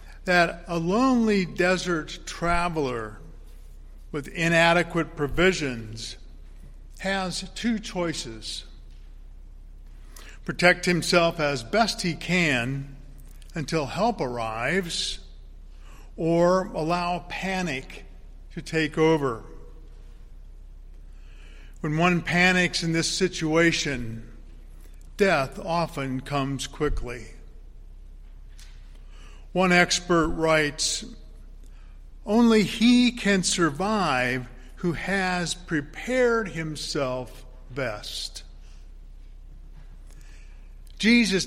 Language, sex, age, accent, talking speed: English, male, 50-69, American, 70 wpm